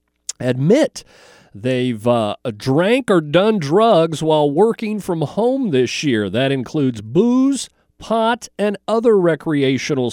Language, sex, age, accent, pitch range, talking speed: English, male, 40-59, American, 130-205 Hz, 120 wpm